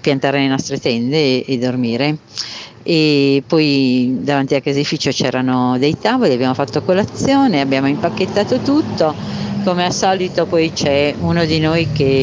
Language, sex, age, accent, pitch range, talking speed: Italian, female, 50-69, native, 125-150 Hz, 145 wpm